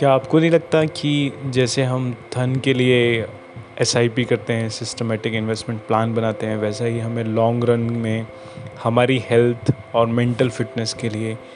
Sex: male